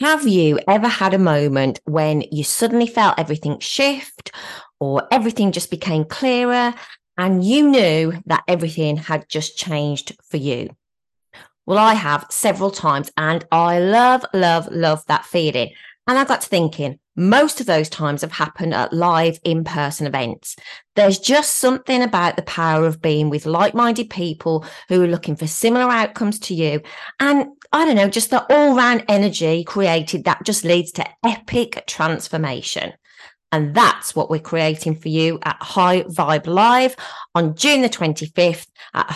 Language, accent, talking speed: English, British, 160 wpm